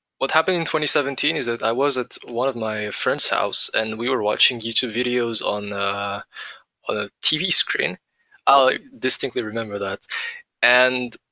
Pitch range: 110-135 Hz